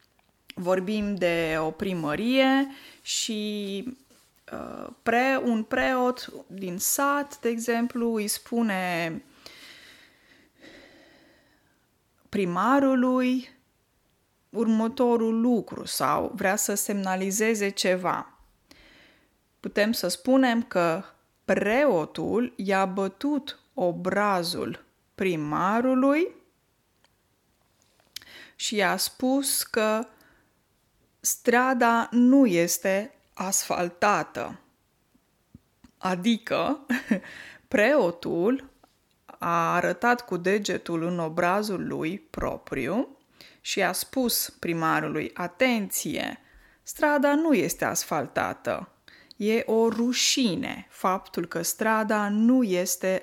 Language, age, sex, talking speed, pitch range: Romanian, 20-39, female, 75 wpm, 190-260 Hz